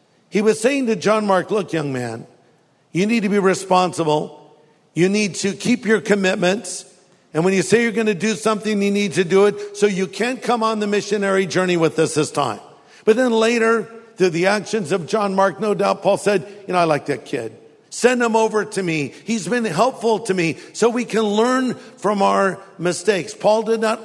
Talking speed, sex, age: 210 wpm, male, 50-69